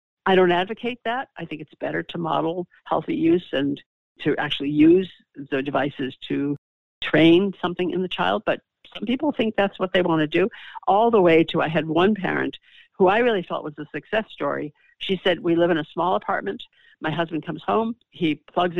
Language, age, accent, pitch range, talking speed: English, 60-79, American, 155-195 Hz, 205 wpm